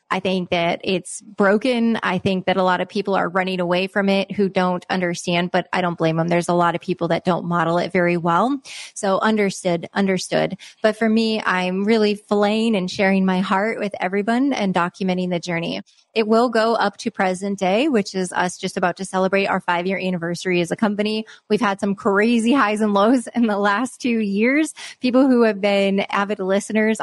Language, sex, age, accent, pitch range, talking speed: English, female, 20-39, American, 185-210 Hz, 205 wpm